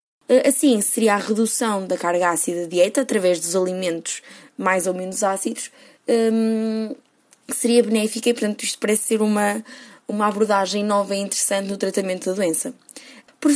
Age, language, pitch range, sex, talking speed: 20-39, Portuguese, 195-245 Hz, female, 155 wpm